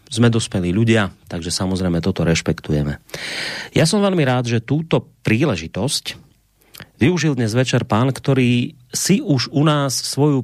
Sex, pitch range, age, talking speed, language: male, 100-140 Hz, 30-49, 140 wpm, Slovak